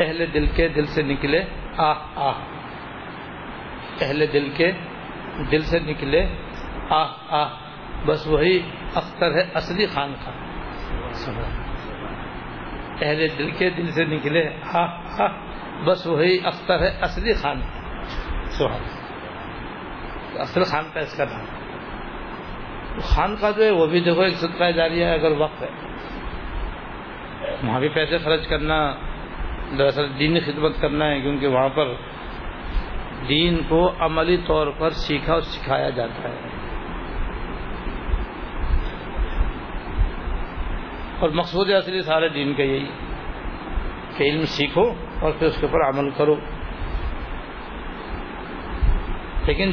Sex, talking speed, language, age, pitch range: male, 120 wpm, Urdu, 60-79, 140-175 Hz